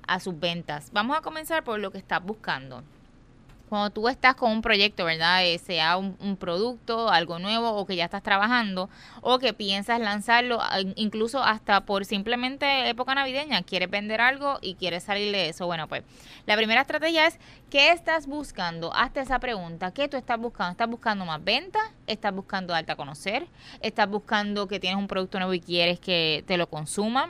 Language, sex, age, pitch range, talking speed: Spanish, female, 20-39, 180-235 Hz, 185 wpm